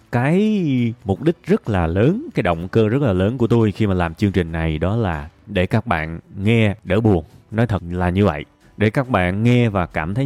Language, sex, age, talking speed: Vietnamese, male, 20-39, 235 wpm